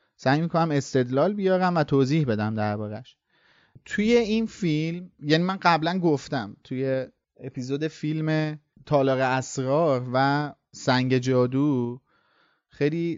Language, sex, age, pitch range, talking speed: Persian, male, 30-49, 125-150 Hz, 110 wpm